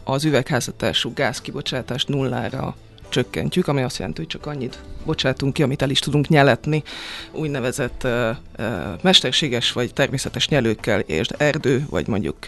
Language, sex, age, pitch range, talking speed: Hungarian, female, 30-49, 125-155 Hz, 140 wpm